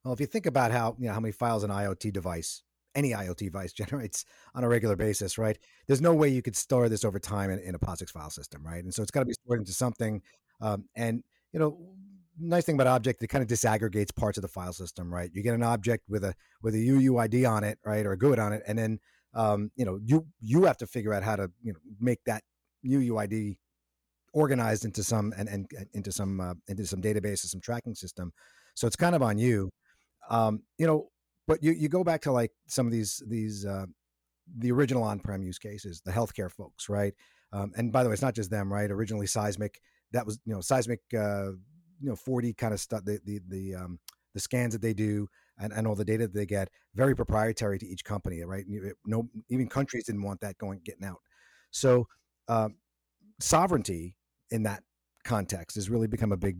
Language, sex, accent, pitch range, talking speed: English, male, American, 100-120 Hz, 225 wpm